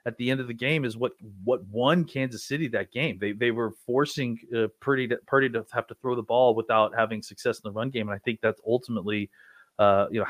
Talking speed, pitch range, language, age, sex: 250 wpm, 110-140 Hz, English, 30-49, male